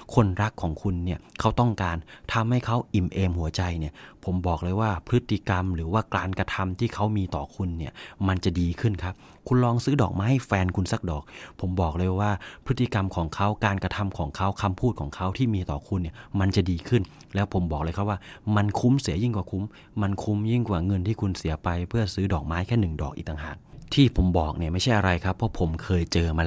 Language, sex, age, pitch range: English, male, 30-49, 85-110 Hz